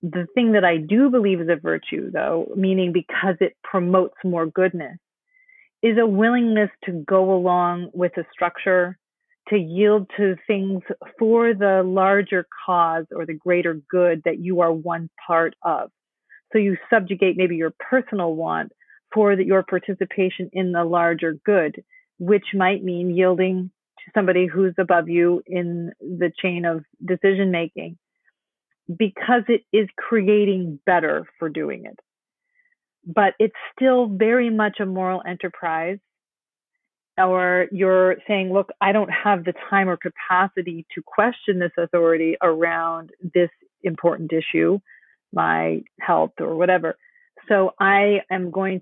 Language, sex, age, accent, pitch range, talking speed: English, female, 30-49, American, 175-205 Hz, 145 wpm